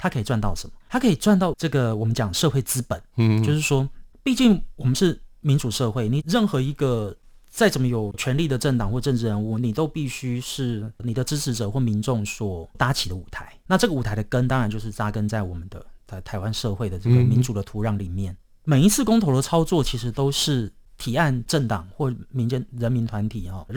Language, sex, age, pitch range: Chinese, male, 30-49, 110-140 Hz